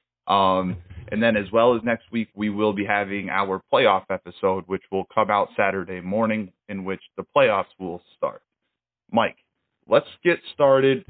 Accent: American